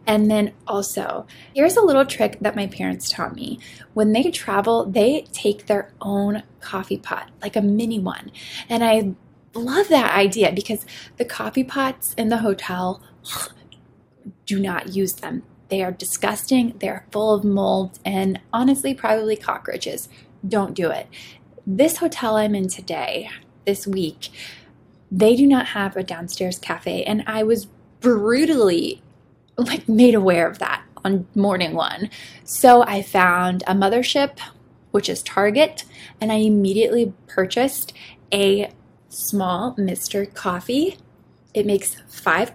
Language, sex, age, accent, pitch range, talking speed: English, female, 10-29, American, 195-235 Hz, 140 wpm